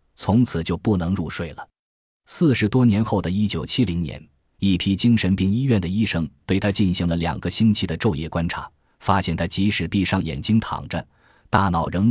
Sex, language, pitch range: male, Chinese, 85-110 Hz